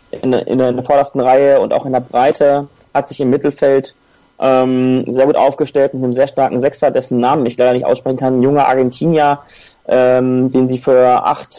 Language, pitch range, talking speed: German, 120-140 Hz, 190 wpm